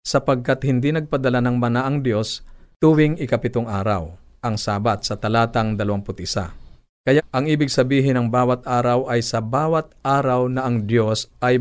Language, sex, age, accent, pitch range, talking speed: Filipino, male, 50-69, native, 105-130 Hz, 155 wpm